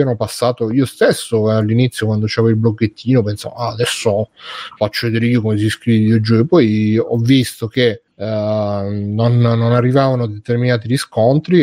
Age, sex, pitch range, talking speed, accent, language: 30-49, male, 110-130 Hz, 160 wpm, native, Italian